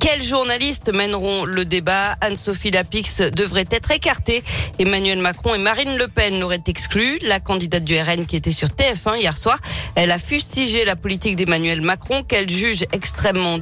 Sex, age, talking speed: female, 40-59, 165 wpm